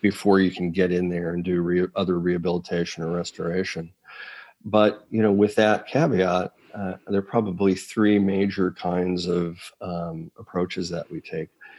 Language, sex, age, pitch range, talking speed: English, male, 40-59, 90-100 Hz, 165 wpm